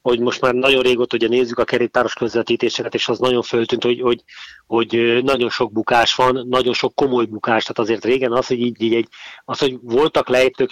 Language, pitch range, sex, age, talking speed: Hungarian, 115-125 Hz, male, 30-49, 195 wpm